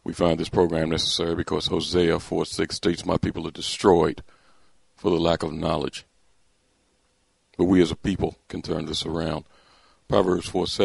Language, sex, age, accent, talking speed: English, male, 50-69, American, 155 wpm